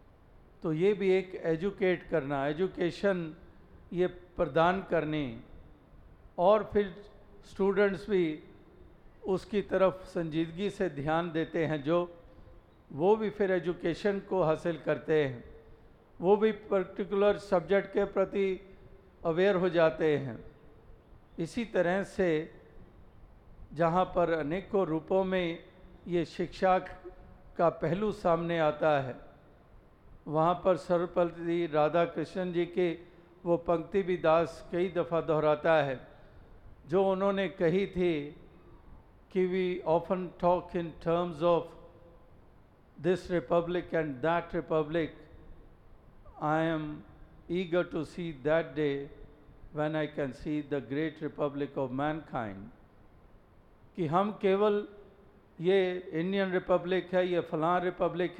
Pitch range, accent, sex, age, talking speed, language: 155-185 Hz, native, male, 50-69, 115 wpm, Hindi